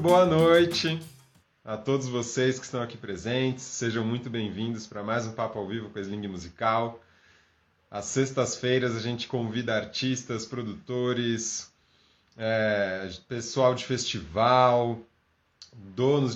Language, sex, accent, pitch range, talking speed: Portuguese, male, Brazilian, 110-125 Hz, 120 wpm